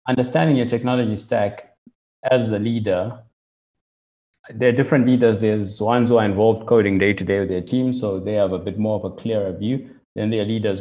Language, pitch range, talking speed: English, 95-115 Hz, 195 wpm